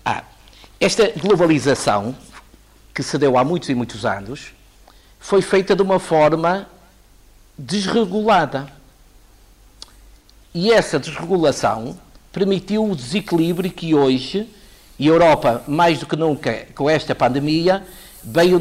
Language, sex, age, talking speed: Portuguese, male, 50-69, 115 wpm